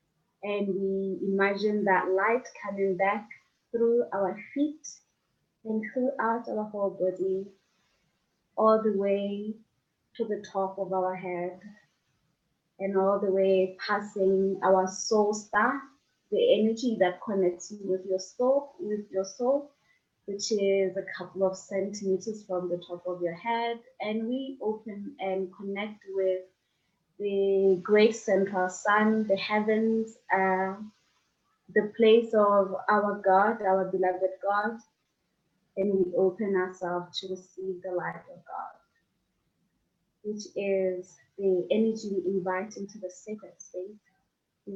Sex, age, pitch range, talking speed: female, 20-39, 185-210 Hz, 130 wpm